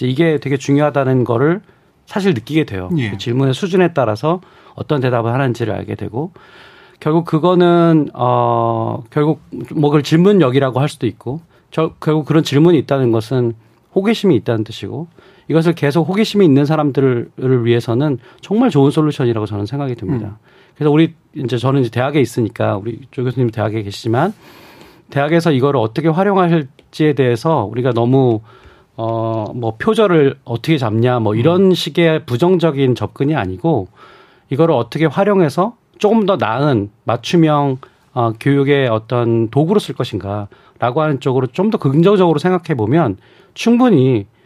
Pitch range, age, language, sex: 120-165 Hz, 40-59, Korean, male